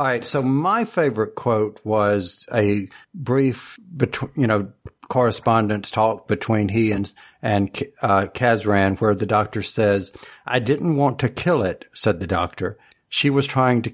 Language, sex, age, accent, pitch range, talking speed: English, male, 60-79, American, 105-135 Hz, 160 wpm